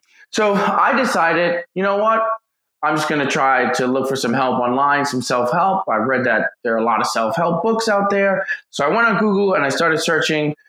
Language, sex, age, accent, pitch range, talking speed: English, male, 20-39, American, 130-190 Hz, 235 wpm